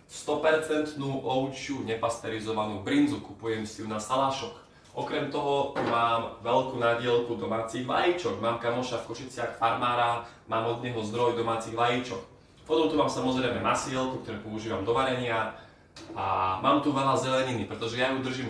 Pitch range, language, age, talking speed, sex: 115-135 Hz, Slovak, 20-39, 145 wpm, male